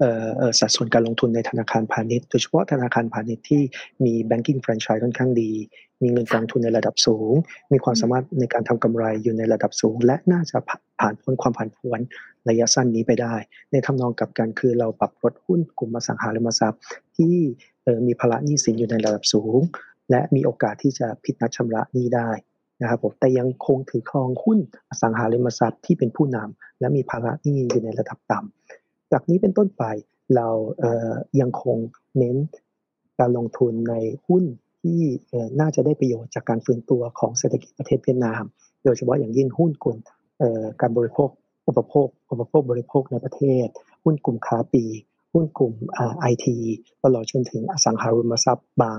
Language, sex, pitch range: Thai, male, 115-135 Hz